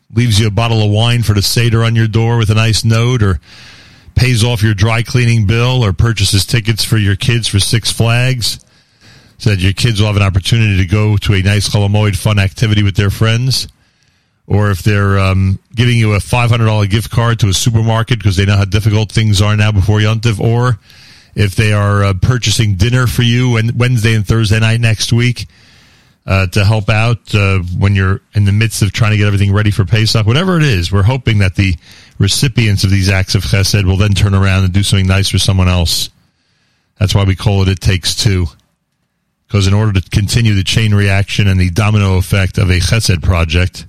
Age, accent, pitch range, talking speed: 40-59, American, 100-115 Hz, 210 wpm